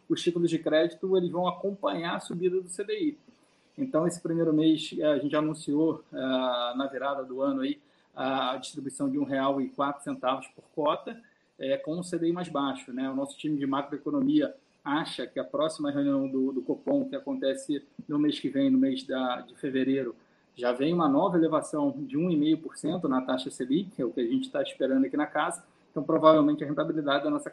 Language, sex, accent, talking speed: Portuguese, male, Brazilian, 180 wpm